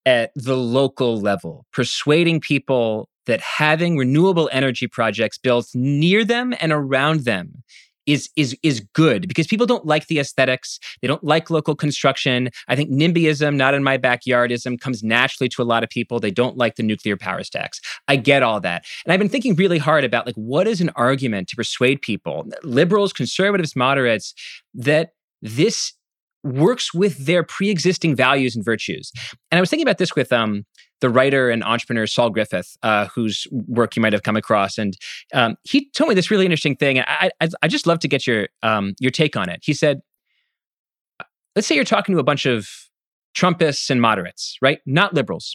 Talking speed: 190 wpm